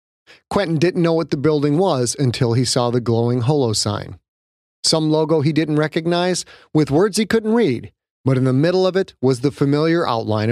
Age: 30-49